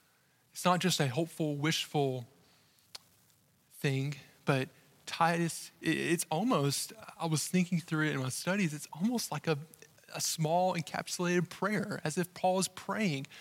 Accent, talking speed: American, 145 wpm